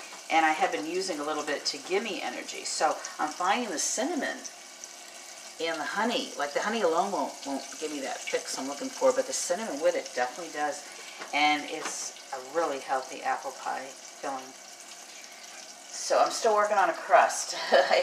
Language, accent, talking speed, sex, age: English, American, 185 wpm, female, 40-59